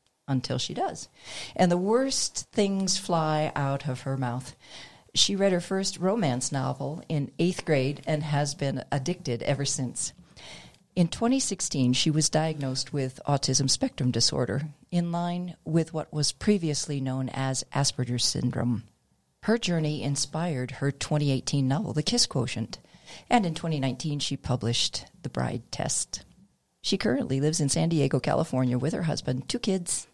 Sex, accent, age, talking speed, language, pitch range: female, American, 50-69, 150 wpm, English, 135-185 Hz